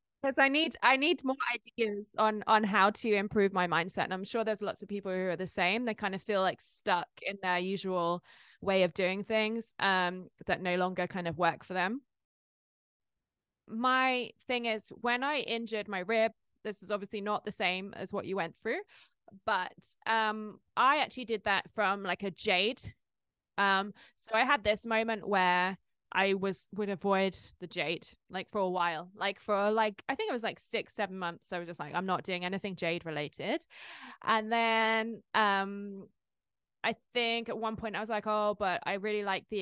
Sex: female